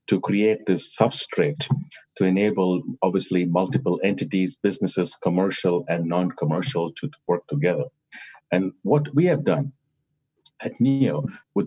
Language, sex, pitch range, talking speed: English, male, 95-140 Hz, 125 wpm